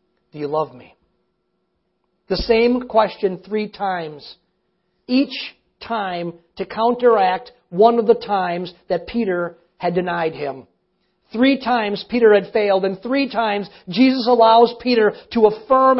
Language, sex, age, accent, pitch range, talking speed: English, male, 40-59, American, 180-245 Hz, 130 wpm